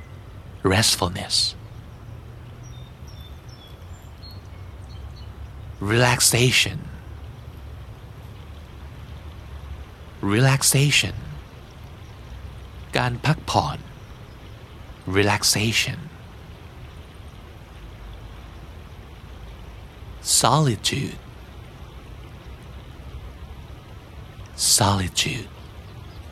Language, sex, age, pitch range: Thai, male, 60-79, 85-110 Hz